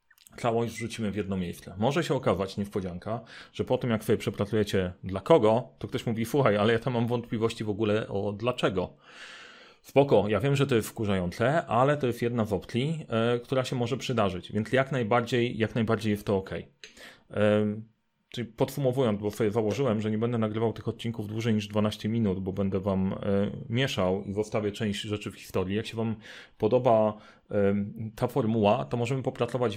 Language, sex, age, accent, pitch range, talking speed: Polish, male, 30-49, native, 105-120 Hz, 185 wpm